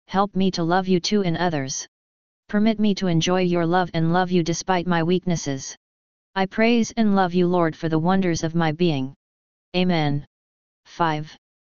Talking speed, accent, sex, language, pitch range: 175 wpm, American, female, English, 155-190 Hz